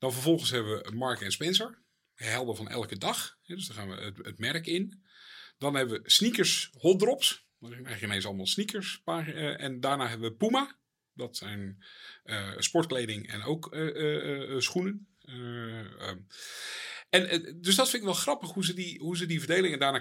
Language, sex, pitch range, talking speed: Dutch, male, 115-175 Hz, 190 wpm